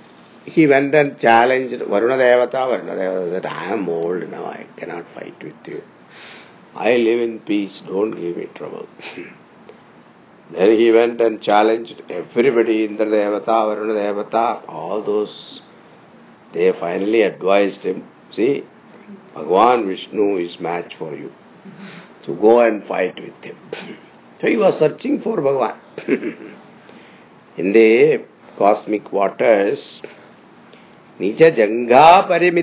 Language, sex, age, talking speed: English, male, 50-69, 120 wpm